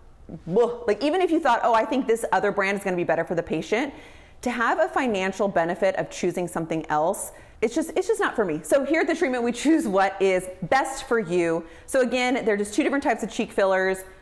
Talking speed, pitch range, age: 235 wpm, 180-260 Hz, 30-49